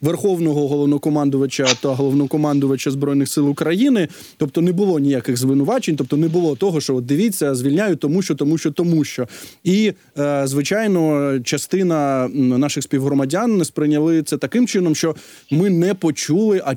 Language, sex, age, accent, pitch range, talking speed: Ukrainian, male, 20-39, native, 145-195 Hz, 145 wpm